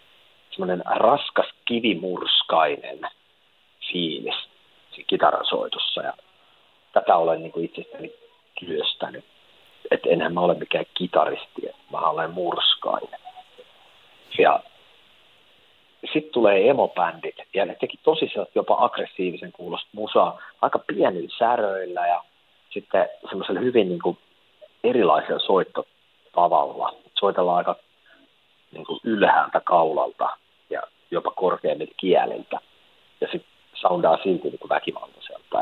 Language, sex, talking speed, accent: Finnish, male, 95 wpm, native